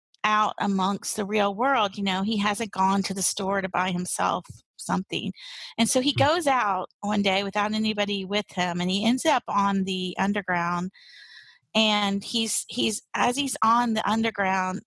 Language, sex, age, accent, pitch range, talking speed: English, female, 40-59, American, 190-225 Hz, 175 wpm